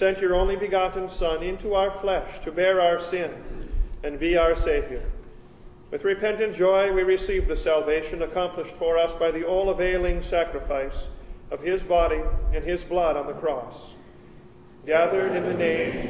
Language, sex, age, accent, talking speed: English, male, 40-59, American, 165 wpm